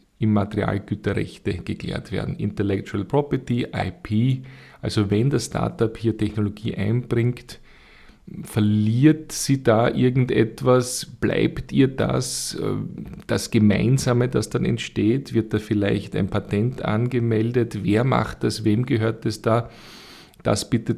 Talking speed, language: 115 wpm, German